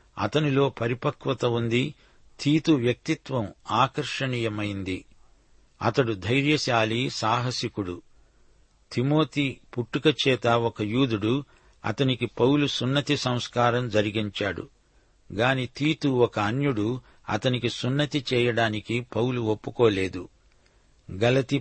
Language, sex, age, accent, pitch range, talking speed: Telugu, male, 60-79, native, 110-135 Hz, 80 wpm